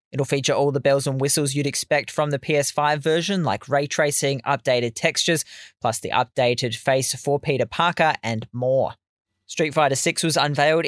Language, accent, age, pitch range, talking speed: English, Australian, 20-39, 120-150 Hz, 175 wpm